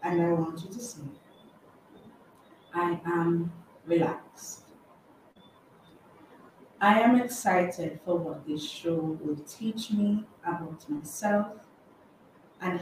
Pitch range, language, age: 160-195 Hz, English, 40-59